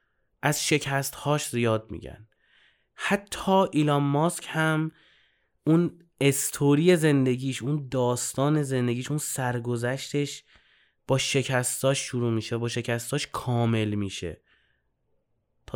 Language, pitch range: Persian, 115-150 Hz